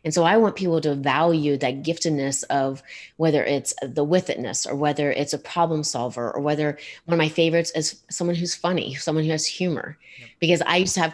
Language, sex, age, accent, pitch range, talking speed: English, female, 30-49, American, 150-180 Hz, 215 wpm